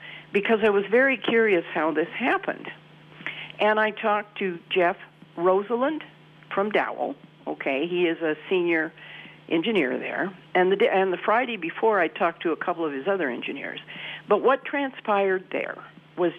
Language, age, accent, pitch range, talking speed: English, 50-69, American, 165-230 Hz, 155 wpm